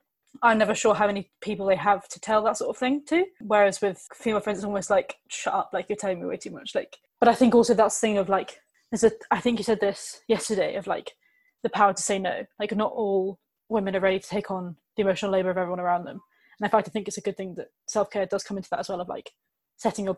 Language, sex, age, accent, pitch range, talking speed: English, female, 20-39, British, 195-230 Hz, 280 wpm